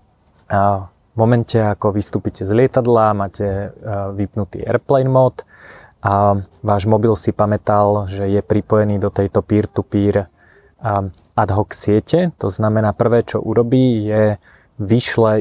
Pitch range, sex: 100-115 Hz, male